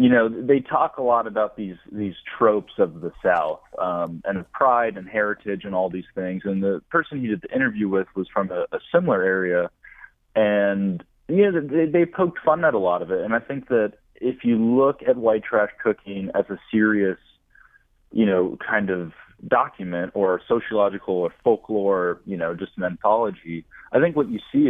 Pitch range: 90-110 Hz